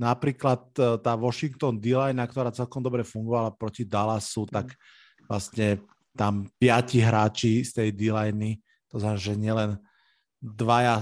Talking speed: 125 wpm